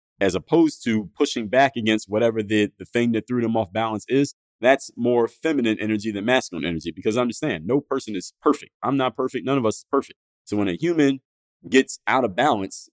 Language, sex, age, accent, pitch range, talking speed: English, male, 30-49, American, 105-130 Hz, 215 wpm